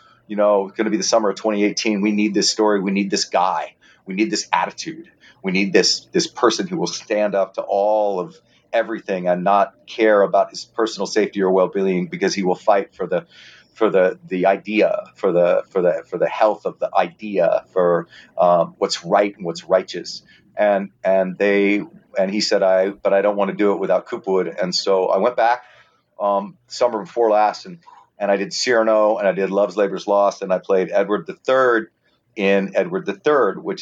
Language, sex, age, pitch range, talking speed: English, male, 40-59, 100-115 Hz, 205 wpm